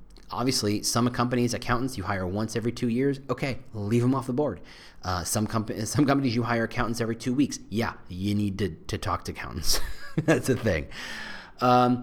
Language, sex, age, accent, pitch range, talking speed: English, male, 30-49, American, 95-145 Hz, 190 wpm